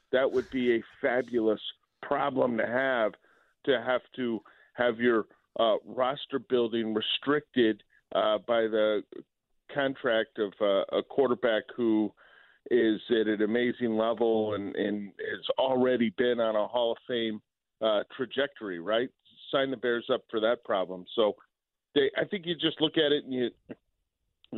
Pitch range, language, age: 110-125 Hz, English, 40-59